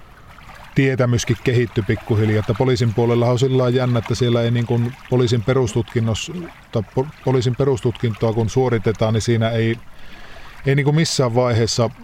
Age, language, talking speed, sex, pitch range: 20-39, Finnish, 130 wpm, male, 110-125 Hz